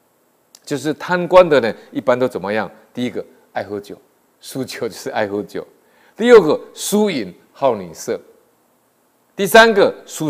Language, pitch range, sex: Chinese, 110-160 Hz, male